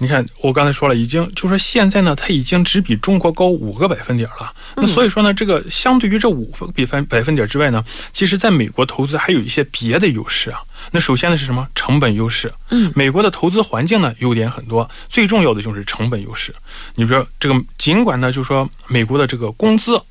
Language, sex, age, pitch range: Korean, male, 20-39, 120-175 Hz